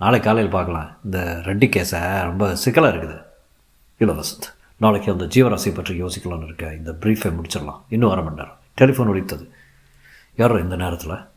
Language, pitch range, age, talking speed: Tamil, 95-115 Hz, 50-69, 150 wpm